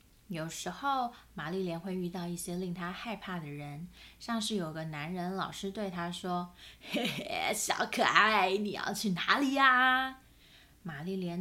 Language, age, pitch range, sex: Chinese, 20-39, 175-225 Hz, female